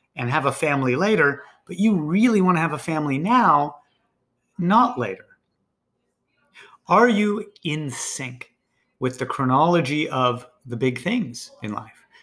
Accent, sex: American, male